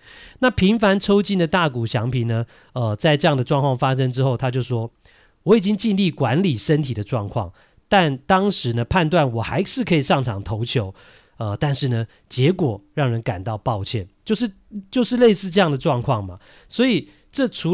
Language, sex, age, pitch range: Chinese, male, 40-59, 115-170 Hz